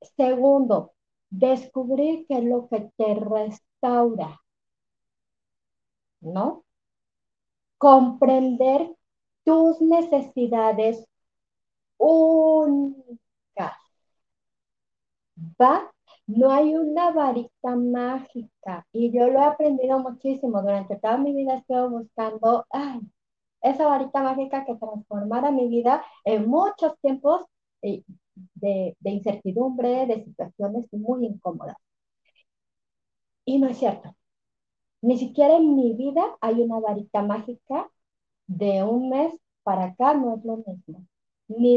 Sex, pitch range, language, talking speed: female, 210-270 Hz, Spanish, 105 wpm